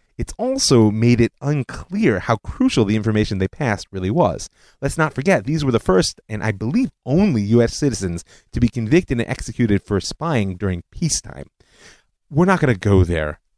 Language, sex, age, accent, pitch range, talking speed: English, male, 30-49, American, 95-130 Hz, 180 wpm